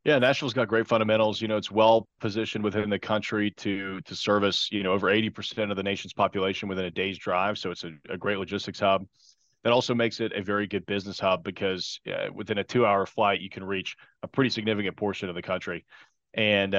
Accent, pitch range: American, 95-110 Hz